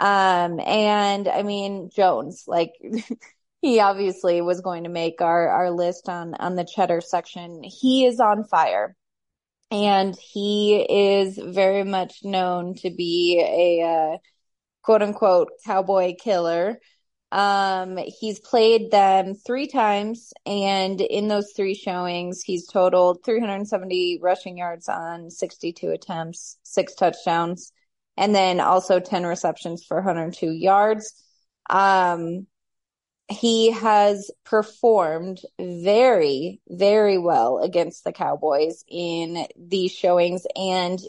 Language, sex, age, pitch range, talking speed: English, female, 20-39, 180-215 Hz, 120 wpm